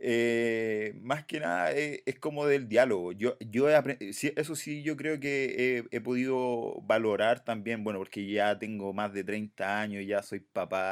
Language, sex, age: Spanish, male, 30-49